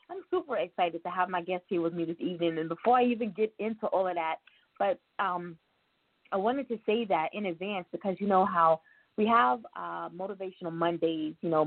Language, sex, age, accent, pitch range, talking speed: English, female, 20-39, American, 170-205 Hz, 210 wpm